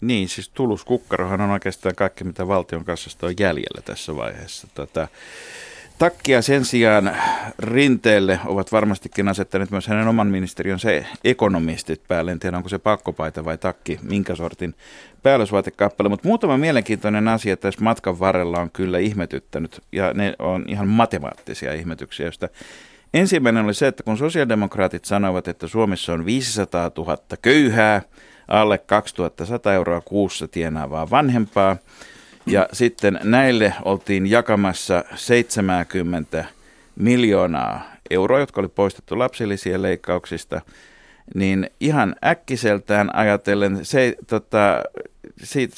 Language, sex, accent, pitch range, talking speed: Finnish, male, native, 95-120 Hz, 125 wpm